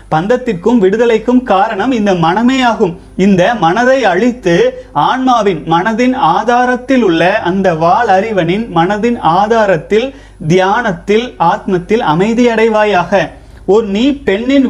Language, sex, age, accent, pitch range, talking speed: Tamil, male, 30-49, native, 185-250 Hz, 100 wpm